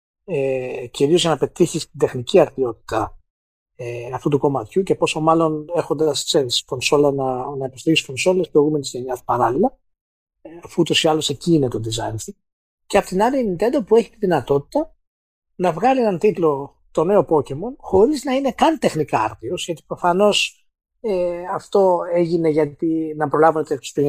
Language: Greek